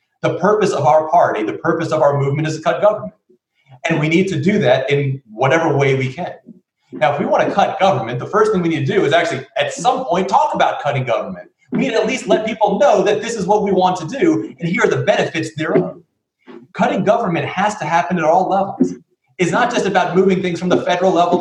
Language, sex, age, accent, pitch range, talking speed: English, male, 30-49, American, 150-180 Hz, 245 wpm